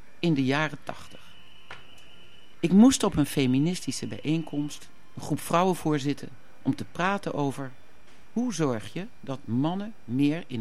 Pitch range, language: 115-170 Hz, Dutch